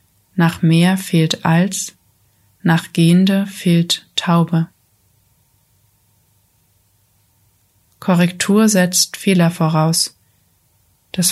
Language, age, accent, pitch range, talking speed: German, 20-39, German, 125-180 Hz, 70 wpm